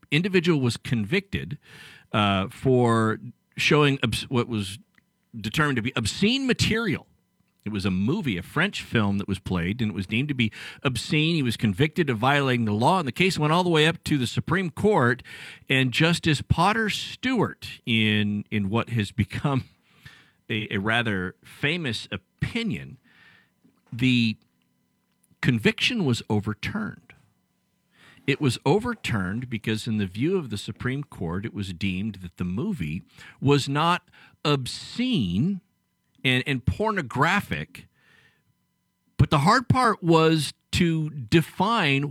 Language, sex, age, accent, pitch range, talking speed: English, male, 50-69, American, 110-160 Hz, 140 wpm